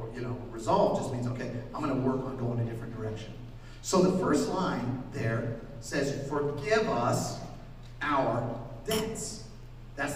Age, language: 40-59, English